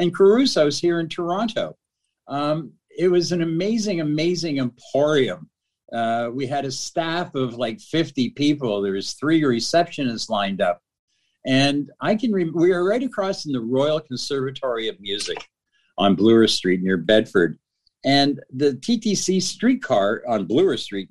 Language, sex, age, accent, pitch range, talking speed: English, male, 50-69, American, 120-165 Hz, 150 wpm